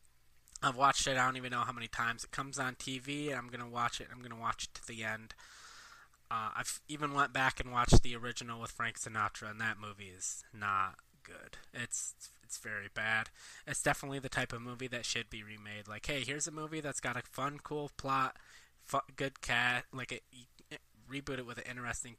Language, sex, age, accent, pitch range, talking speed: English, male, 20-39, American, 110-130 Hz, 230 wpm